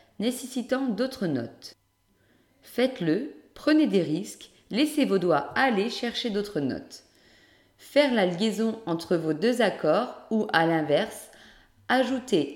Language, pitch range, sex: French, 160-240 Hz, female